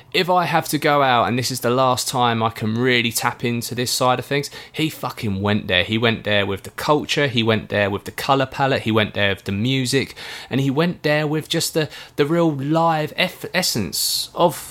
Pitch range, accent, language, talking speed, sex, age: 110-155 Hz, British, English, 230 wpm, male, 20-39